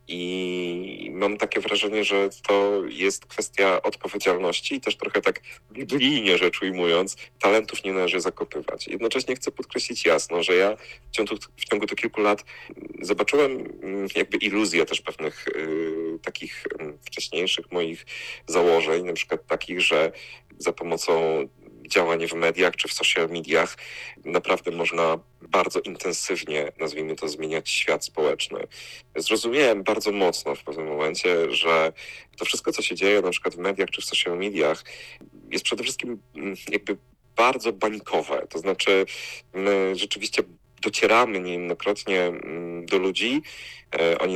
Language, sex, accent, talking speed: Polish, male, native, 135 wpm